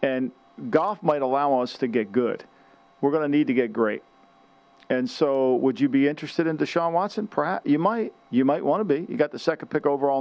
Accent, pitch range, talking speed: American, 130-165 Hz, 225 wpm